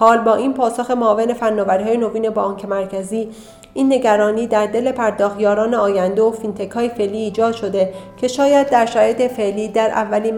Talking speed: 175 wpm